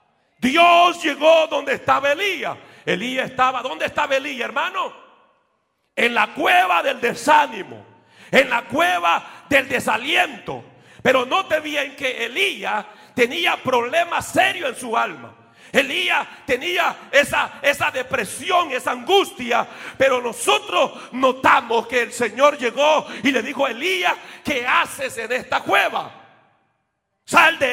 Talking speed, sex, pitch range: 130 wpm, male, 245-320 Hz